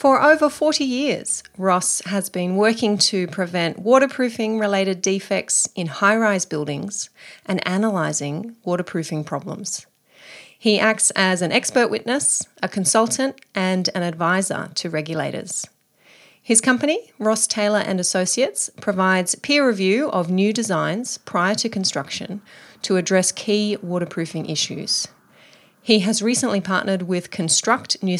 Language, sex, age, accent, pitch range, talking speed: English, female, 30-49, Australian, 175-215 Hz, 125 wpm